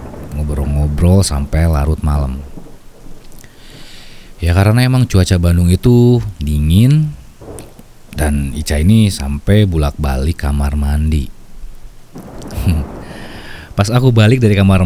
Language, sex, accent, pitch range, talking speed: Indonesian, male, native, 75-105 Hz, 95 wpm